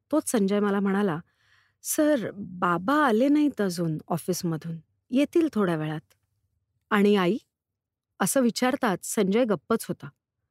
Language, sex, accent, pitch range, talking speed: Marathi, female, native, 165-250 Hz, 115 wpm